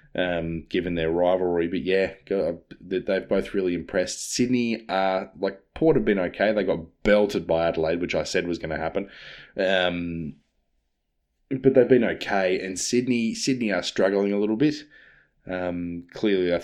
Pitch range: 85-100 Hz